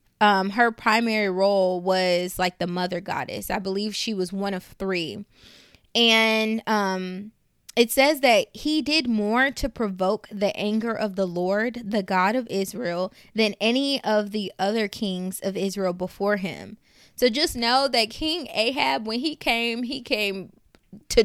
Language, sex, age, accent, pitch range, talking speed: English, female, 20-39, American, 195-235 Hz, 160 wpm